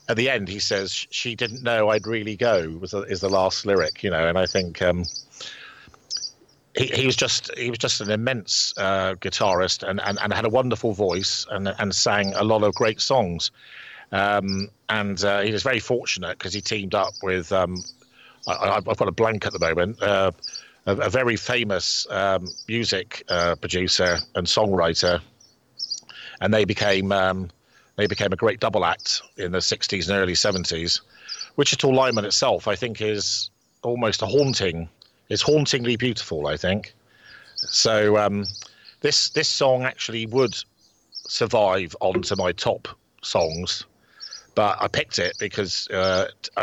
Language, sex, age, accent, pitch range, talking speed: English, male, 50-69, British, 95-115 Hz, 165 wpm